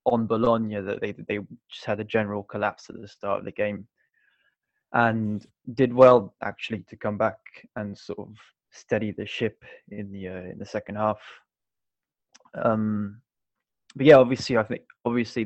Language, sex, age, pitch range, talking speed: English, male, 20-39, 105-125 Hz, 165 wpm